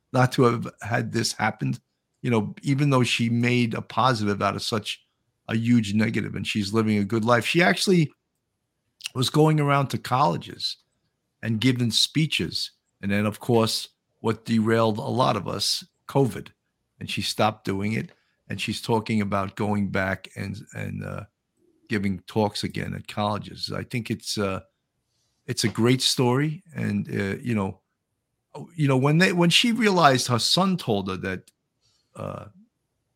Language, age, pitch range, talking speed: English, 50-69, 105-130 Hz, 165 wpm